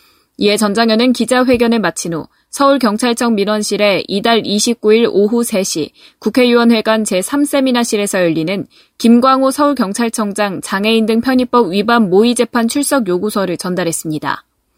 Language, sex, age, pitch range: Korean, female, 10-29, 205-250 Hz